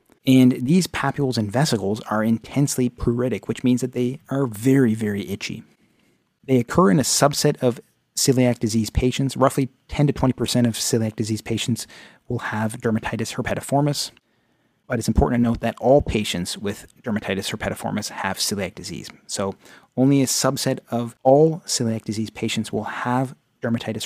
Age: 30-49